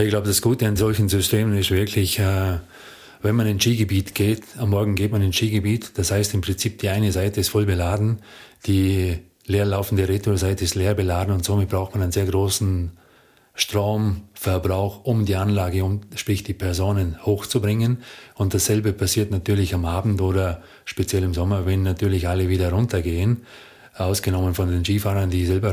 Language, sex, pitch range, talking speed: German, male, 95-105 Hz, 170 wpm